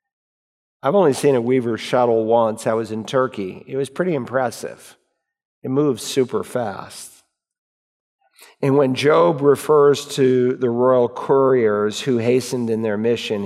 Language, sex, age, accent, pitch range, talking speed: English, male, 50-69, American, 115-135 Hz, 145 wpm